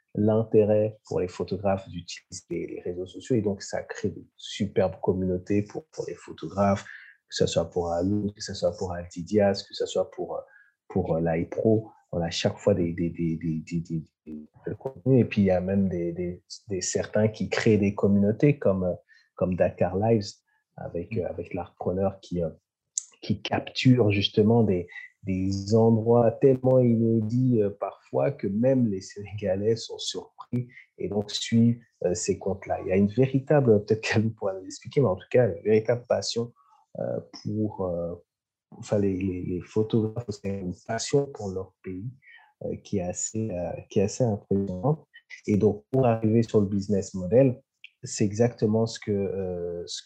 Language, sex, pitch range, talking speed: English, male, 95-115 Hz, 170 wpm